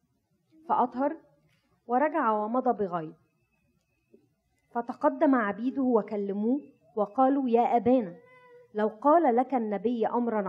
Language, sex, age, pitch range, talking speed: Arabic, female, 30-49, 215-255 Hz, 85 wpm